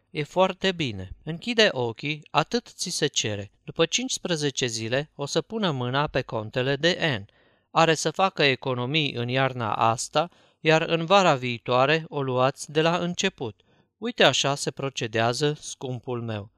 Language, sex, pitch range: Romanian, male, 120-160 Hz